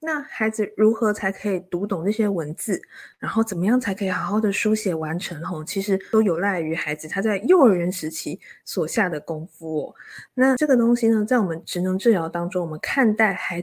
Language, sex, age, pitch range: Chinese, female, 20-39, 180-235 Hz